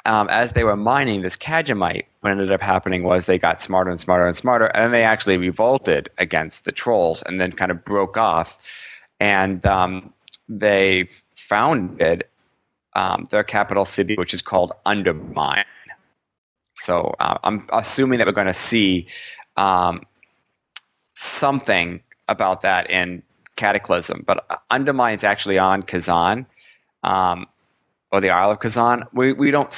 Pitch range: 90-110 Hz